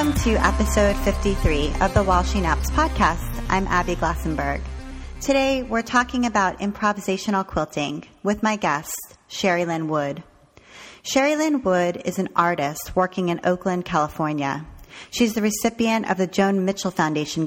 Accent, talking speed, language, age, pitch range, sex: American, 150 wpm, English, 30-49, 165-210 Hz, female